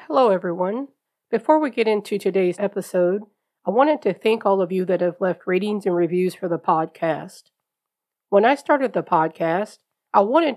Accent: American